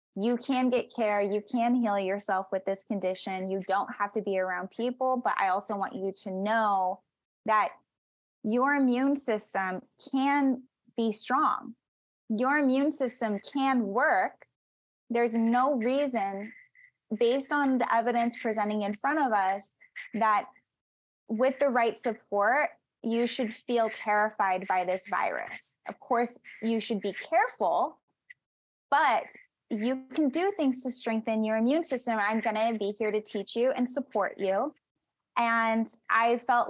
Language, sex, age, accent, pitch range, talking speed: English, female, 10-29, American, 210-260 Hz, 150 wpm